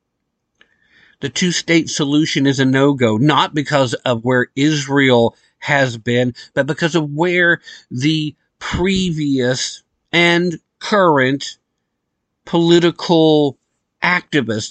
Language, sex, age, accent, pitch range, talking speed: English, male, 50-69, American, 130-175 Hz, 95 wpm